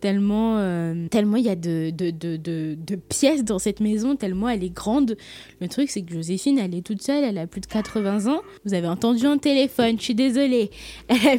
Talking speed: 225 wpm